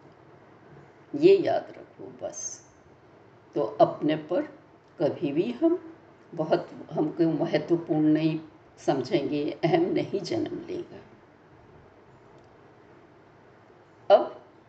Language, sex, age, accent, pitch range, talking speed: Hindi, female, 60-79, native, 260-350 Hz, 85 wpm